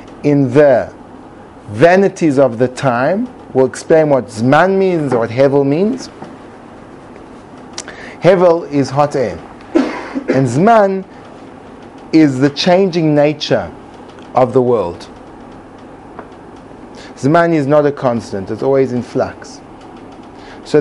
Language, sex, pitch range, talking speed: English, male, 150-215 Hz, 110 wpm